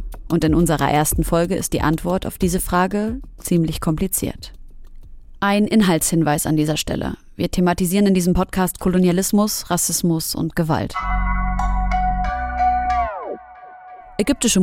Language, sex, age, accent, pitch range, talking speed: German, female, 30-49, German, 155-185 Hz, 115 wpm